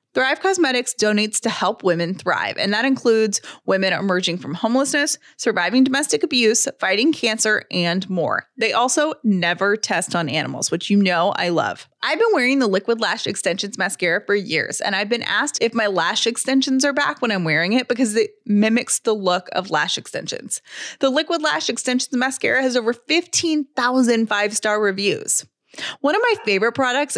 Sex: female